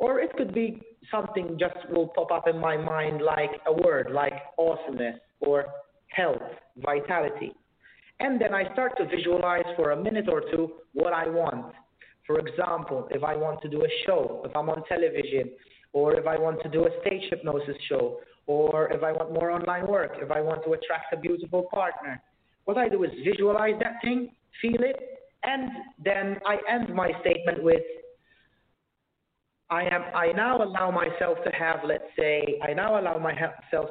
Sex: male